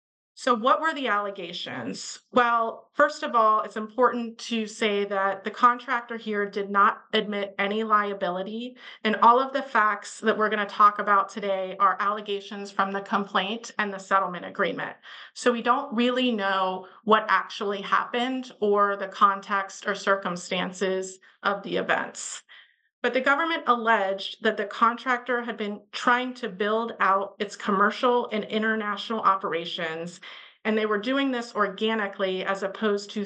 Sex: female